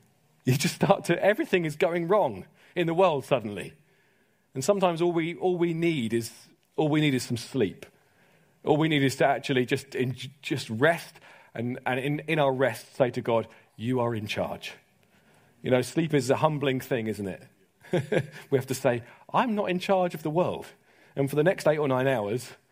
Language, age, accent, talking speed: English, 40-59, British, 200 wpm